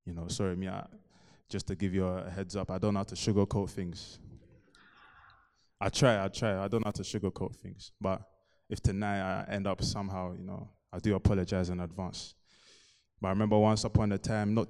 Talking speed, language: 200 wpm, English